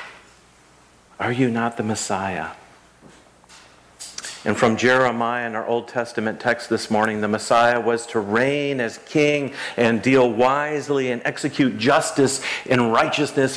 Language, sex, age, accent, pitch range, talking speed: English, male, 50-69, American, 110-130 Hz, 135 wpm